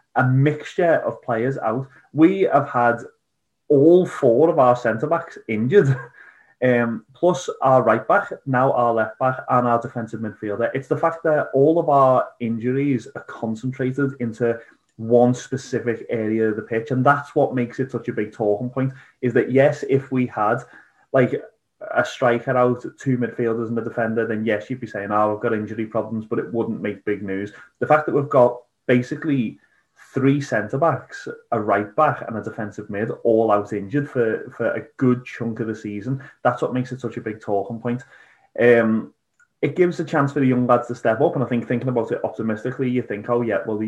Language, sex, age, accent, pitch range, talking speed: English, male, 30-49, British, 115-135 Hz, 195 wpm